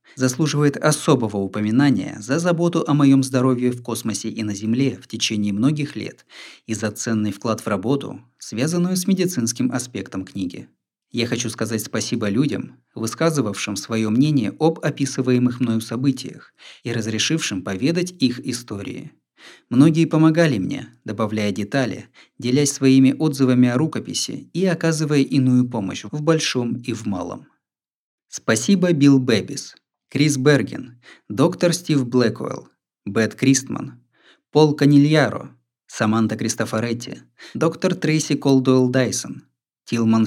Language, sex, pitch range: Russian, male, 110-145 Hz